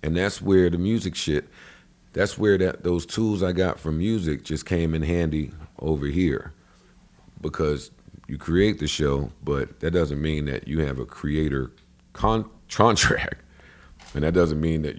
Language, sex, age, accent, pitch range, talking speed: English, male, 50-69, American, 70-90 Hz, 170 wpm